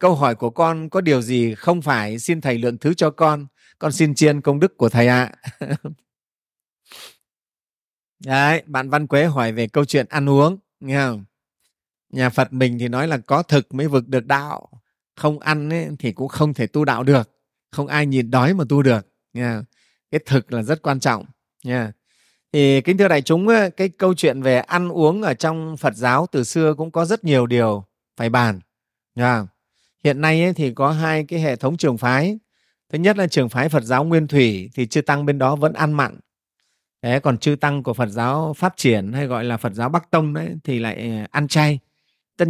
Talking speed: 210 wpm